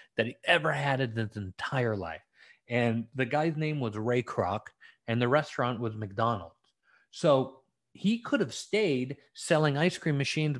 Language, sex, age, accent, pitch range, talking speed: English, male, 30-49, American, 120-160 Hz, 165 wpm